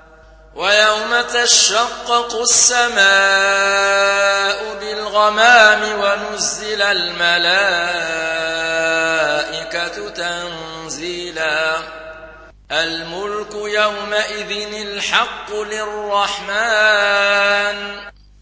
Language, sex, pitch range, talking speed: Arabic, male, 165-210 Hz, 35 wpm